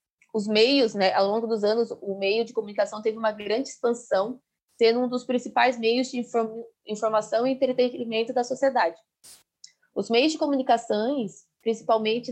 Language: Portuguese